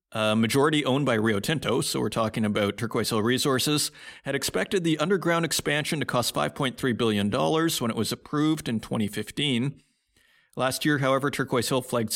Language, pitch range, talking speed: English, 115-150 Hz, 170 wpm